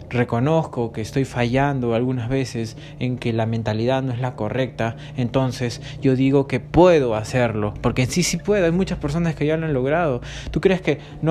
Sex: male